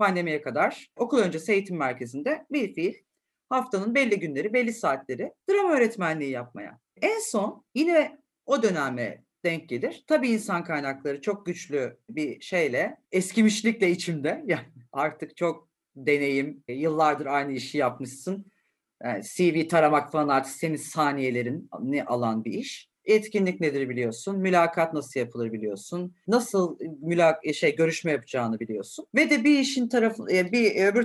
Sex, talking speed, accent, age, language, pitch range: female, 135 wpm, native, 40-59, Turkish, 145-245 Hz